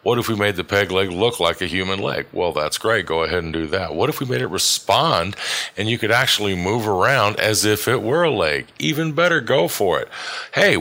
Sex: male